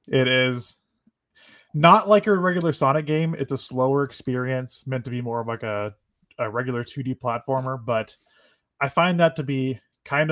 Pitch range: 110-150 Hz